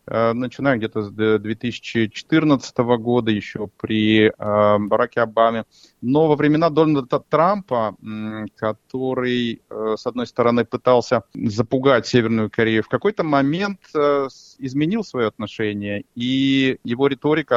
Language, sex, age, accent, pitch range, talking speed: Russian, male, 30-49, native, 115-145 Hz, 105 wpm